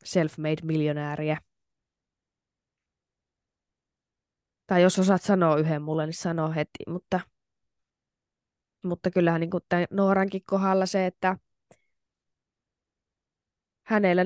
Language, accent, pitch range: Finnish, native, 160-190 Hz